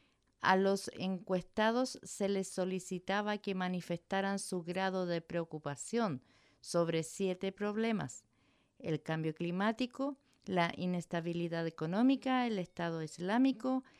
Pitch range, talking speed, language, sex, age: 175-225 Hz, 105 wpm, English, female, 50-69